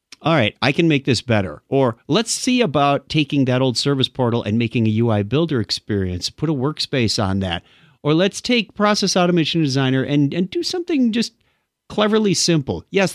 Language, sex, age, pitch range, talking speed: English, male, 50-69, 120-175 Hz, 185 wpm